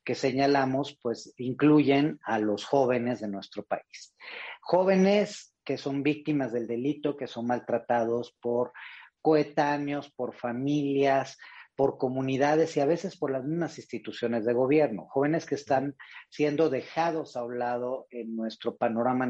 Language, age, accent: Spanish, 40-59, Mexican